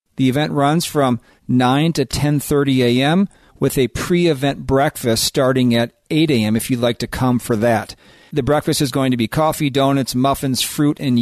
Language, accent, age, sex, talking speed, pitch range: English, American, 40-59, male, 180 wpm, 125-150 Hz